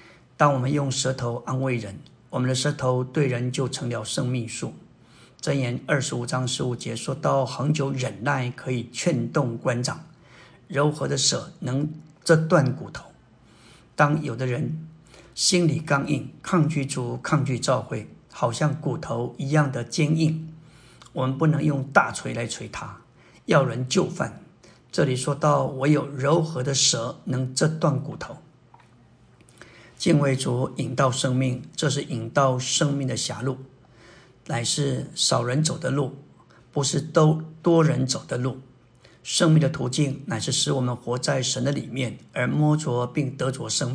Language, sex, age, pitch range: Chinese, male, 60-79, 130-155 Hz